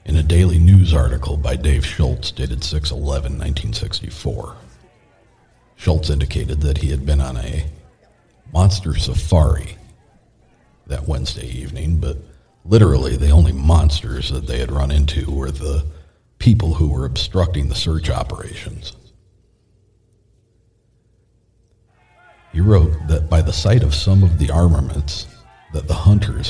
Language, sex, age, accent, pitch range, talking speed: English, male, 50-69, American, 75-105 Hz, 125 wpm